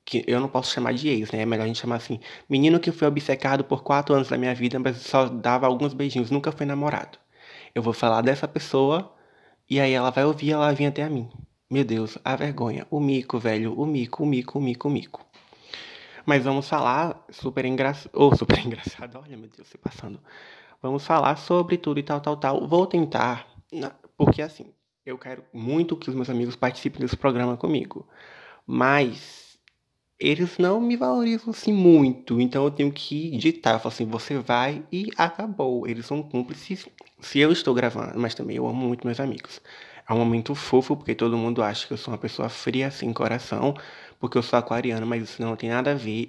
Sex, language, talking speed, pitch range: male, Portuguese, 205 wpm, 120-145 Hz